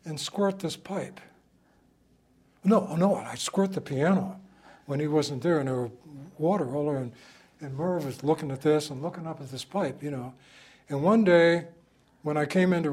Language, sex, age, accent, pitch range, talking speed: English, male, 60-79, American, 140-195 Hz, 190 wpm